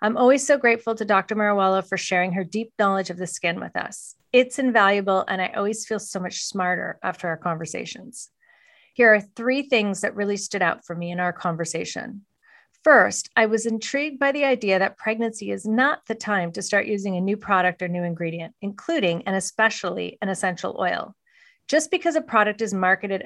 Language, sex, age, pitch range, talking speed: English, female, 40-59, 185-230 Hz, 195 wpm